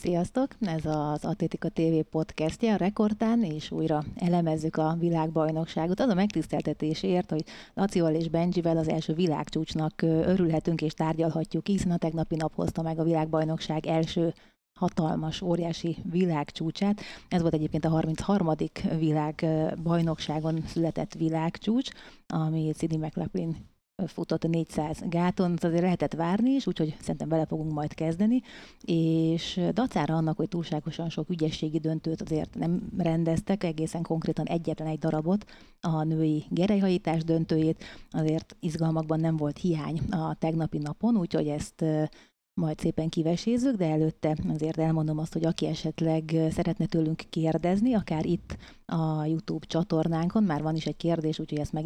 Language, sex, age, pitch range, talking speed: Hungarian, female, 30-49, 155-175 Hz, 140 wpm